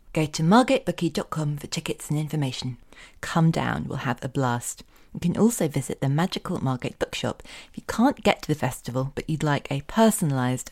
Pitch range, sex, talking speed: 135-165 Hz, female, 185 wpm